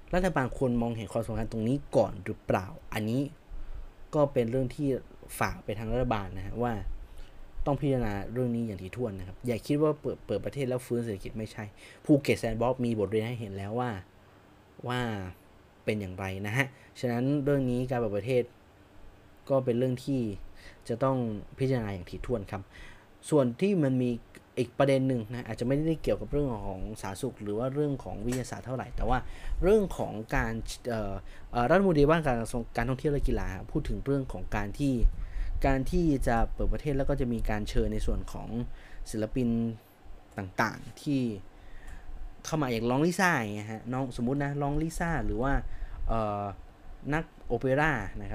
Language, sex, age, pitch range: Thai, male, 20-39, 100-130 Hz